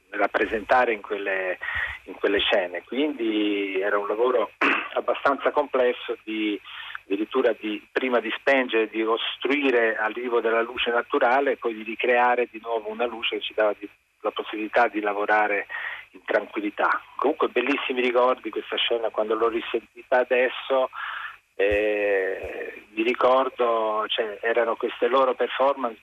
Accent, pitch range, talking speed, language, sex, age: native, 110-130 Hz, 140 wpm, Italian, male, 40-59